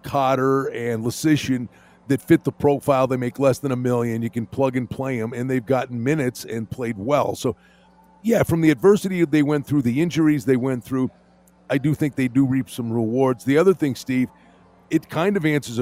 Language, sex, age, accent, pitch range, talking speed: English, male, 50-69, American, 120-155 Hz, 210 wpm